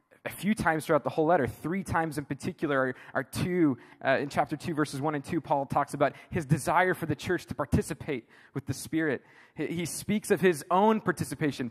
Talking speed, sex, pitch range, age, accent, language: 215 wpm, male, 130-165 Hz, 20-39, American, English